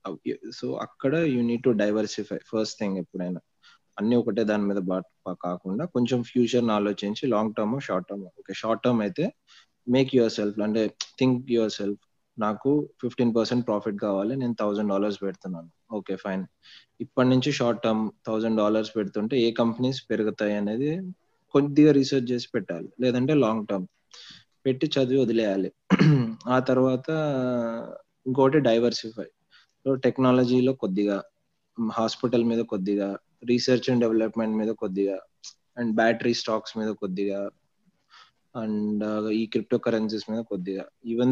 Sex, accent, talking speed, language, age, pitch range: male, native, 130 wpm, Telugu, 20-39, 105-125 Hz